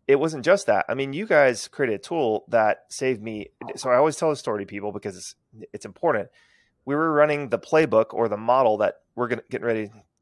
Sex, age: male, 30-49